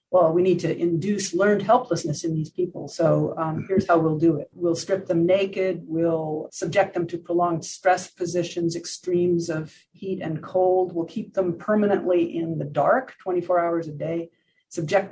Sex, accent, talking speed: female, American, 180 wpm